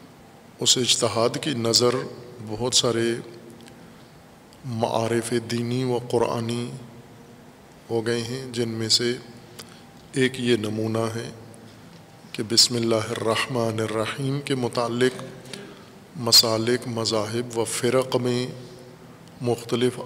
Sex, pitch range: male, 115-130 Hz